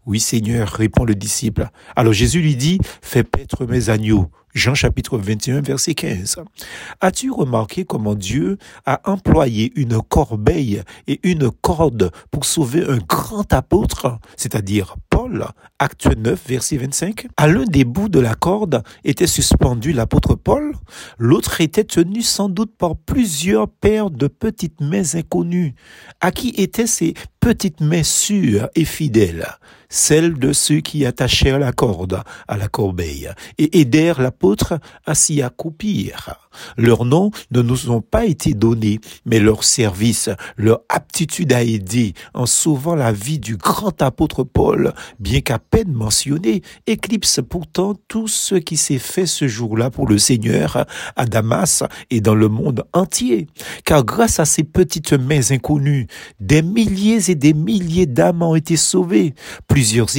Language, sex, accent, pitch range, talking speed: French, male, French, 115-175 Hz, 155 wpm